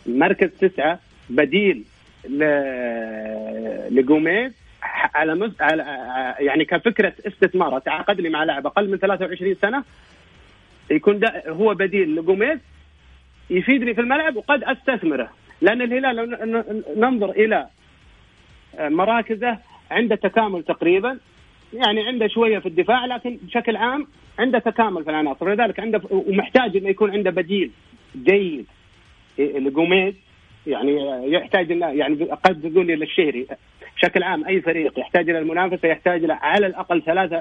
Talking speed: 120 wpm